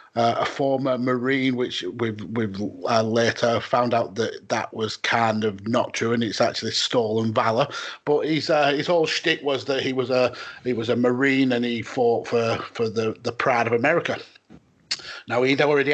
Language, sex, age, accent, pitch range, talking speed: English, male, 30-49, British, 110-125 Hz, 200 wpm